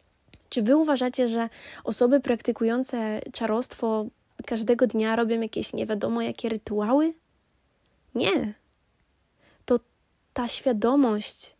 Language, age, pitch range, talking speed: Polish, 20-39, 210-250 Hz, 95 wpm